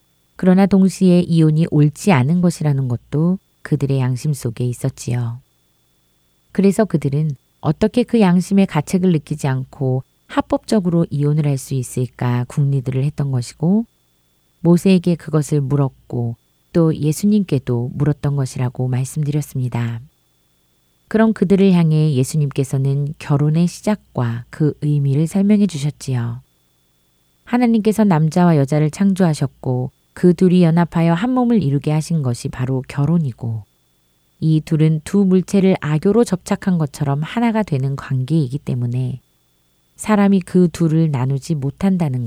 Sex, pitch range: female, 125-175 Hz